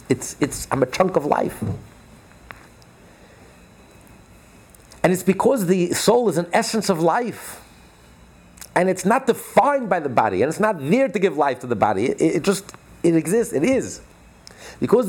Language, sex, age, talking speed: English, male, 50-69, 165 wpm